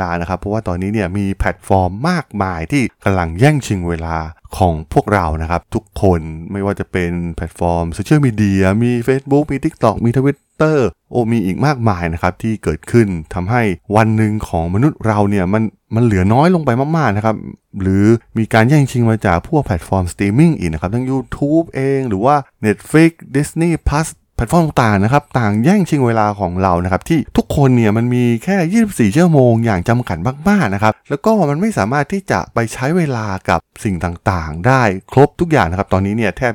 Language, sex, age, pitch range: Thai, male, 20-39, 95-130 Hz